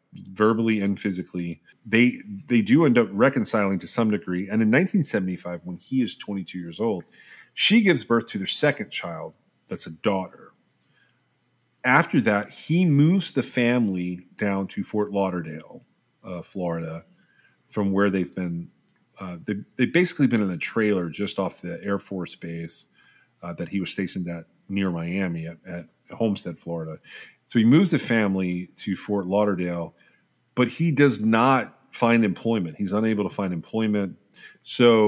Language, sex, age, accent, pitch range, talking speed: English, male, 40-59, American, 90-120 Hz, 155 wpm